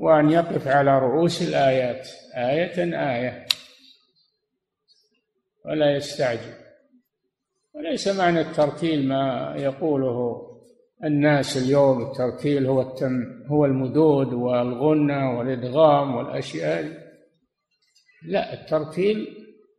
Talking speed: 75 wpm